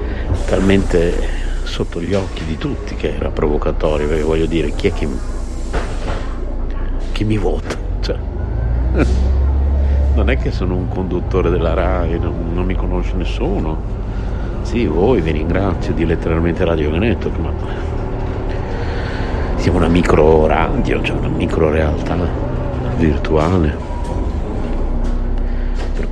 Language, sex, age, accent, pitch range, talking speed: Italian, male, 60-79, native, 70-85 Hz, 120 wpm